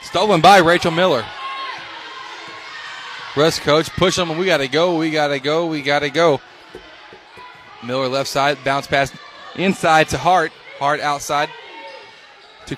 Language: English